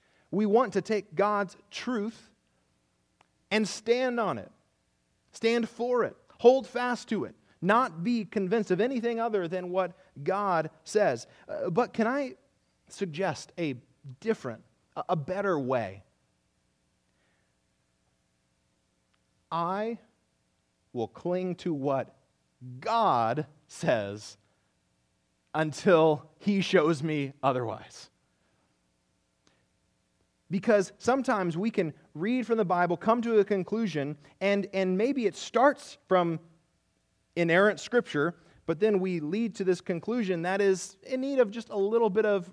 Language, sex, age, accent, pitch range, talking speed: English, male, 30-49, American, 165-230 Hz, 120 wpm